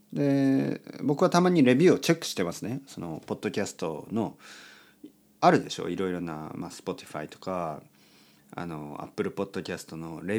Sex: male